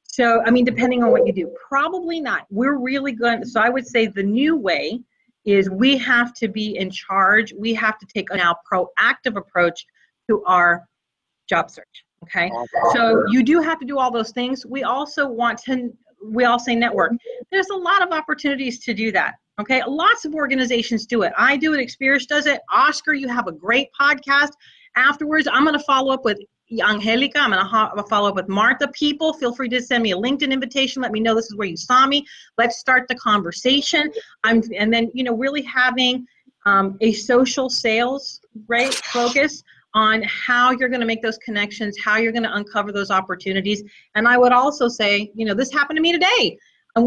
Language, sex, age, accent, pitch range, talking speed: English, female, 40-59, American, 220-275 Hz, 210 wpm